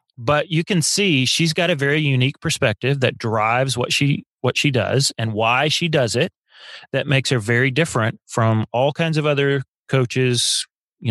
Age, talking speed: 30-49, 185 wpm